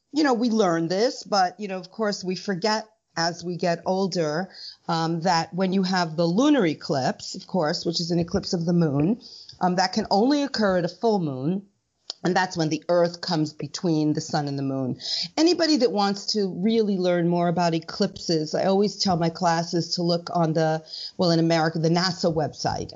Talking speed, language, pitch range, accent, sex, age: 205 wpm, English, 145-175 Hz, American, female, 40-59